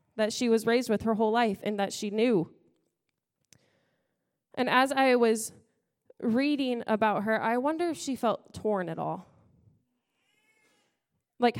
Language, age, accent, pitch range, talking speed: English, 20-39, American, 205-245 Hz, 145 wpm